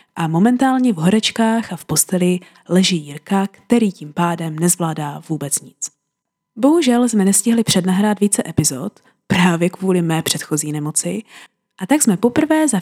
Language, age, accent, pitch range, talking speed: Czech, 20-39, native, 170-235 Hz, 145 wpm